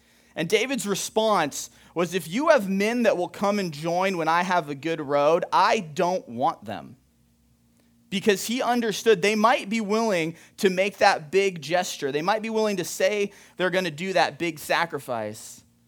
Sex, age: male, 30-49